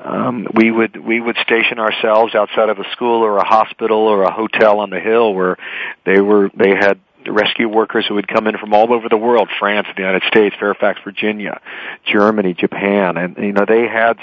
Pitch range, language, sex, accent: 100-115 Hz, English, male, American